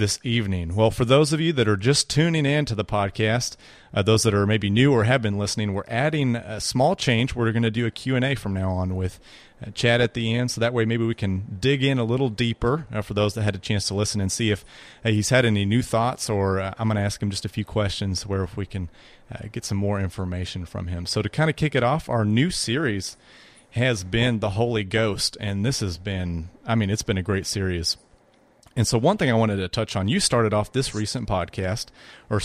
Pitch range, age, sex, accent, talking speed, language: 100-120 Hz, 30-49, male, American, 255 wpm, English